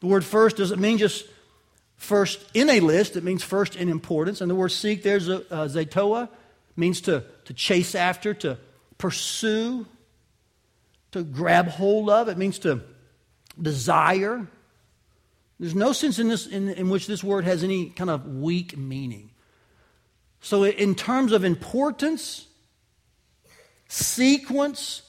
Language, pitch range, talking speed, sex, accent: English, 160-210 Hz, 140 wpm, male, American